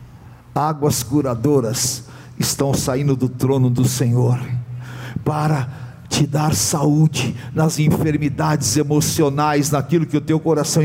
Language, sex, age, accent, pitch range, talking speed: Portuguese, male, 60-79, Brazilian, 135-205 Hz, 110 wpm